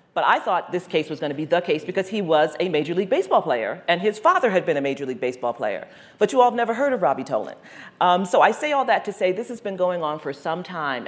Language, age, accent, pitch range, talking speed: English, 40-59, American, 140-180 Hz, 285 wpm